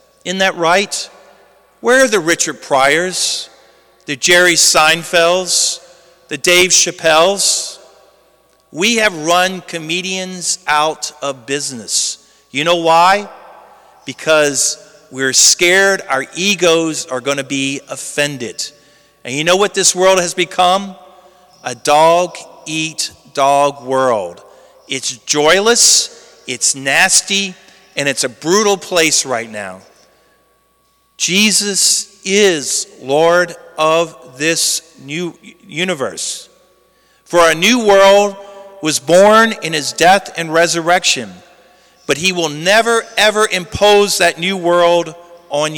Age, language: 40-59, English